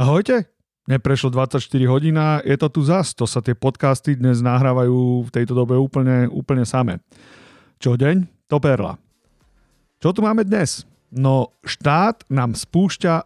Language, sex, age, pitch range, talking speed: Slovak, male, 40-59, 120-150 Hz, 145 wpm